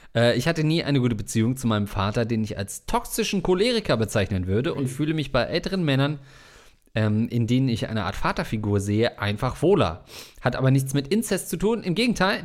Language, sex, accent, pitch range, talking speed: German, male, German, 105-150 Hz, 200 wpm